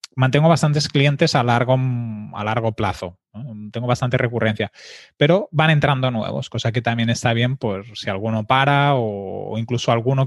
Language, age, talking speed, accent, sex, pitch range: Spanish, 20-39, 170 wpm, Spanish, male, 110-130 Hz